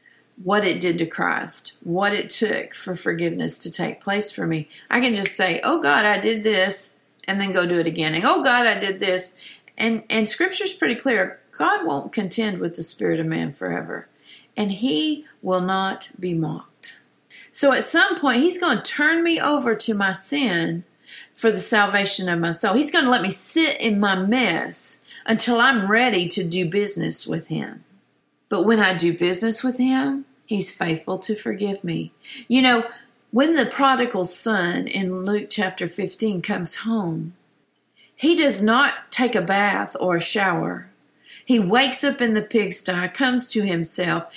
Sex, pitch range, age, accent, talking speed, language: female, 185-260 Hz, 40-59, American, 180 wpm, English